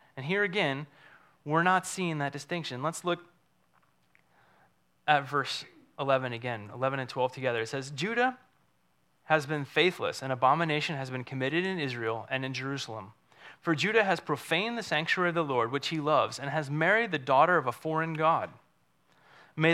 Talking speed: 170 wpm